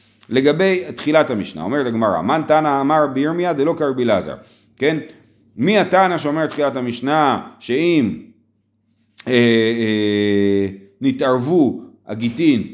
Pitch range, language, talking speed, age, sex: 120-185 Hz, Hebrew, 110 wpm, 40-59, male